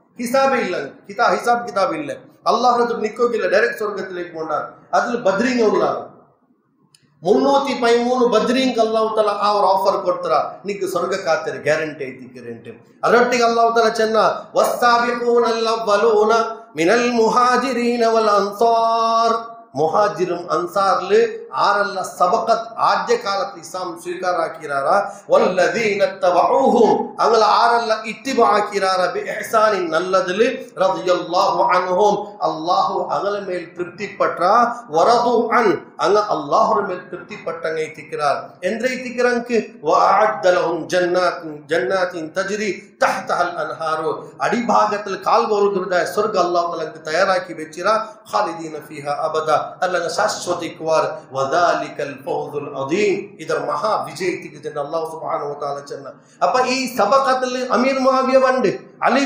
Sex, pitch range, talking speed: male, 175-235 Hz, 40 wpm